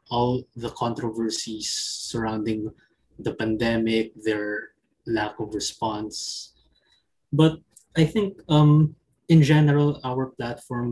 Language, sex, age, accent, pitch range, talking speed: English, male, 20-39, Filipino, 110-130 Hz, 100 wpm